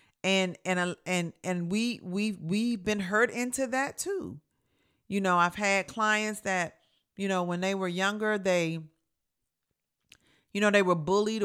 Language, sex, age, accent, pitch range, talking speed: English, female, 40-59, American, 160-200 Hz, 155 wpm